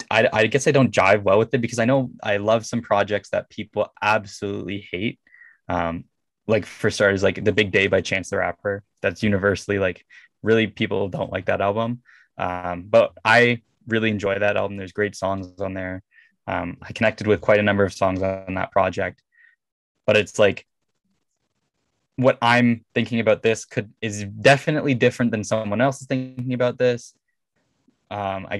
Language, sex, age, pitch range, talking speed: English, male, 10-29, 95-120 Hz, 180 wpm